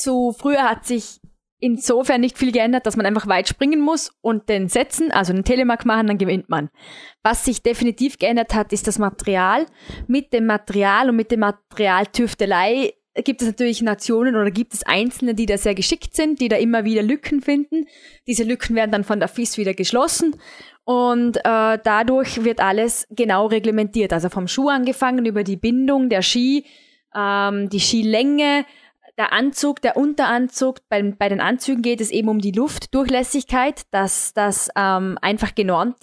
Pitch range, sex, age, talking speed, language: 210-260 Hz, female, 20-39, 175 wpm, German